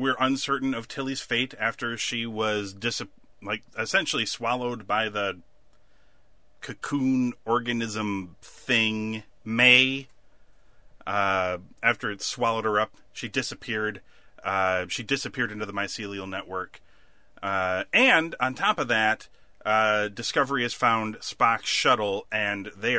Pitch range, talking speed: 100-135 Hz, 120 wpm